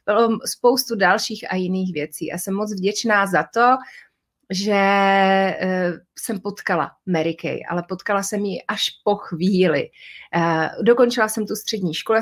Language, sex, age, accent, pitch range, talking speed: Czech, female, 30-49, native, 180-210 Hz, 140 wpm